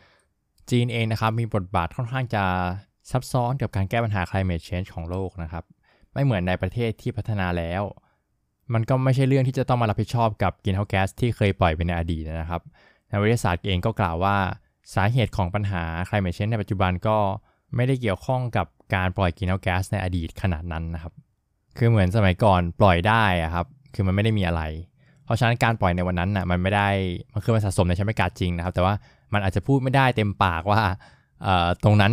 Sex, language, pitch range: male, Thai, 90-110 Hz